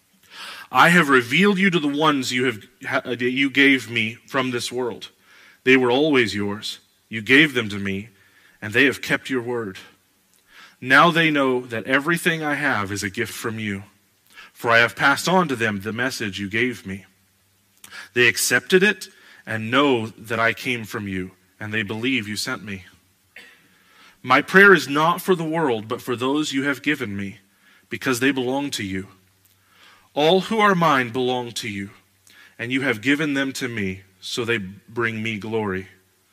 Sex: male